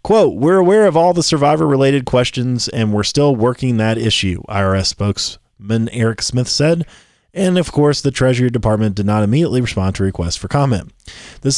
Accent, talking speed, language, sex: American, 180 wpm, English, male